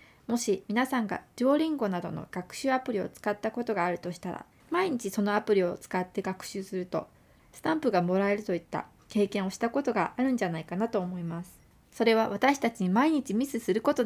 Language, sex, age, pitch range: Japanese, female, 20-39, 185-245 Hz